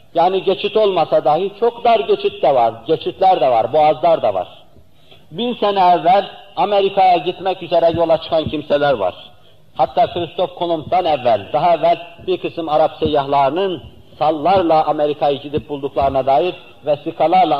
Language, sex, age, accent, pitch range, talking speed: Turkish, male, 50-69, native, 145-185 Hz, 140 wpm